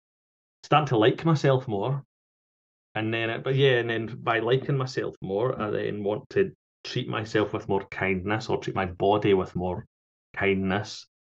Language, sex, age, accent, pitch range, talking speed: English, male, 30-49, British, 100-135 Hz, 170 wpm